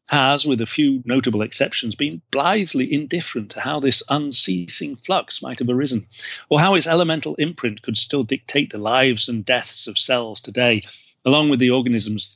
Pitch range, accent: 115-145 Hz, British